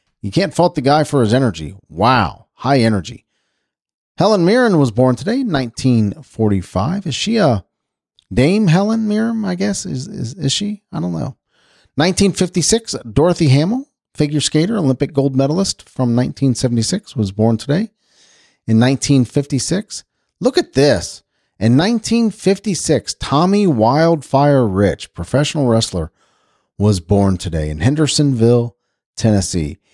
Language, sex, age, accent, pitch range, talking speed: English, male, 40-59, American, 100-150 Hz, 125 wpm